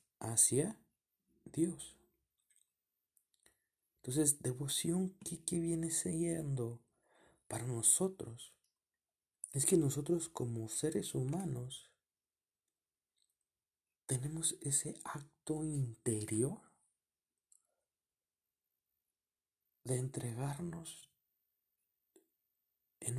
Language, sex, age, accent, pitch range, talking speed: Spanish, male, 40-59, Mexican, 115-145 Hz, 55 wpm